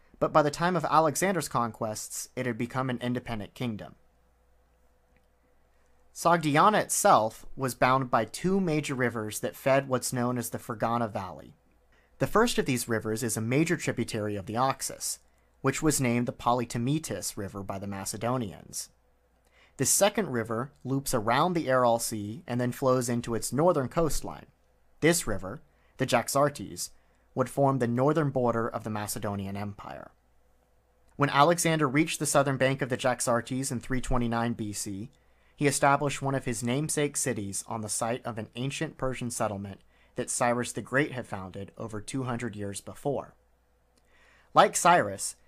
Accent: American